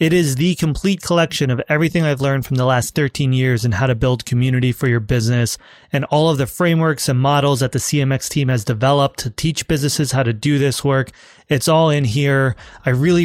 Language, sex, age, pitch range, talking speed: English, male, 30-49, 125-150 Hz, 220 wpm